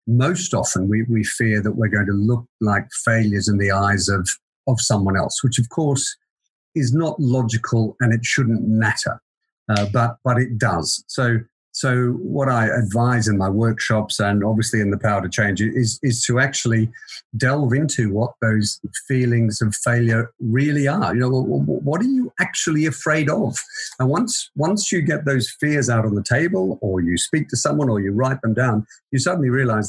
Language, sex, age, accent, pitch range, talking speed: English, male, 50-69, British, 105-140 Hz, 190 wpm